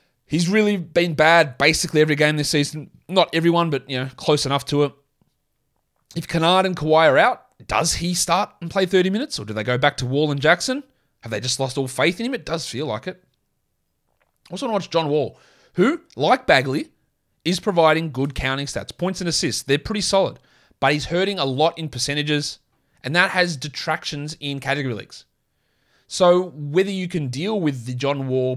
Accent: Australian